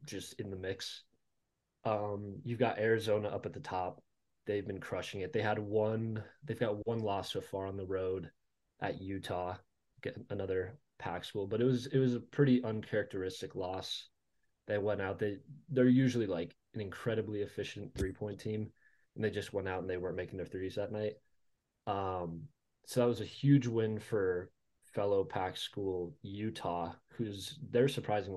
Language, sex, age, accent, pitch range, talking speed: English, male, 20-39, American, 95-115 Hz, 175 wpm